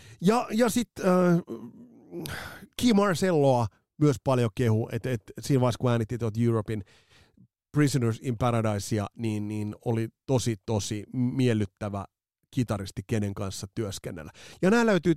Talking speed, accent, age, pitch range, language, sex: 125 wpm, native, 30-49, 105-140 Hz, Finnish, male